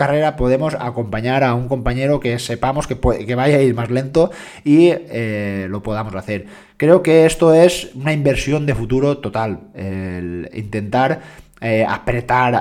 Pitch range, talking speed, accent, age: 115-135 Hz, 160 wpm, Spanish, 20-39